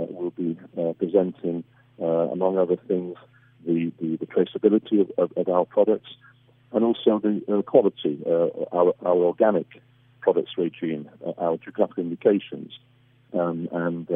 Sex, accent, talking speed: male, British, 130 wpm